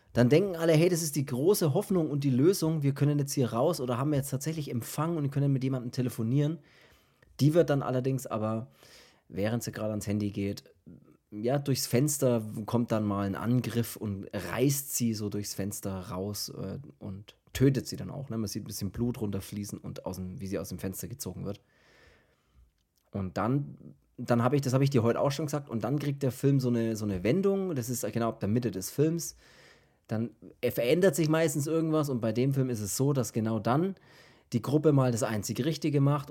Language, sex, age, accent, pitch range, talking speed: German, male, 30-49, German, 105-140 Hz, 210 wpm